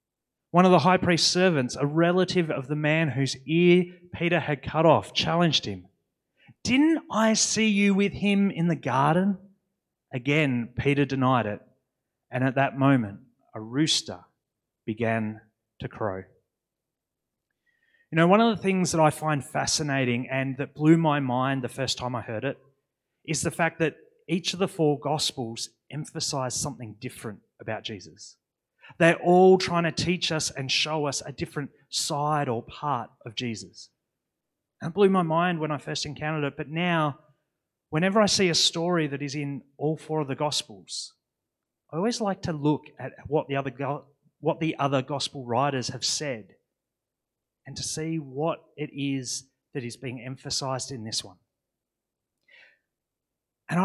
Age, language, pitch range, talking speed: 30-49, English, 130-170 Hz, 160 wpm